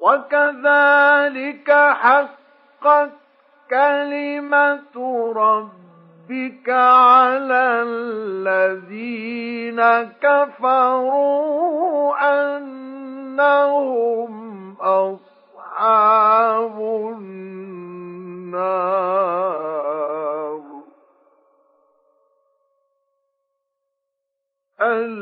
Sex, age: male, 50-69